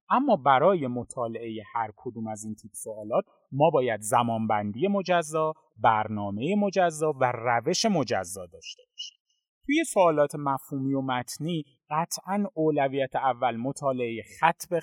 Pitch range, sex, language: 115-165 Hz, male, Persian